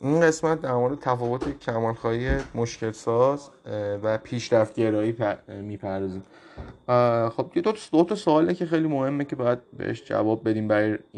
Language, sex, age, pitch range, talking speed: Persian, male, 30-49, 105-125 Hz, 145 wpm